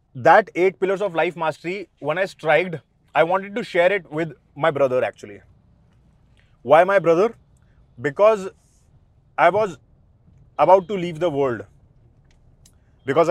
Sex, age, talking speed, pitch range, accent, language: male, 30-49, 135 wpm, 135-185 Hz, native, Hindi